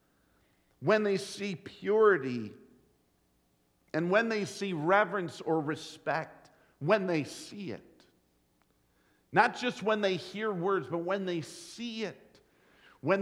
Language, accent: English, American